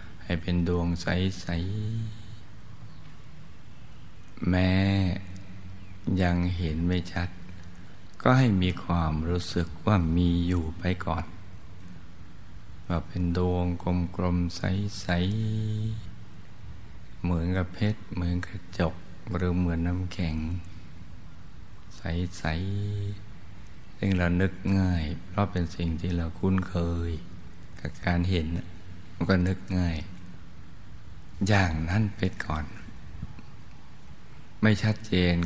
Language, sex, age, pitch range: Thai, male, 60-79, 85-95 Hz